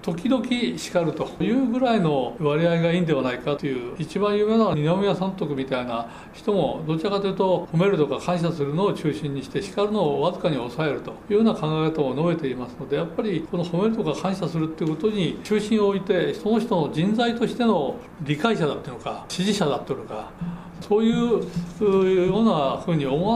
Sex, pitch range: male, 150-210 Hz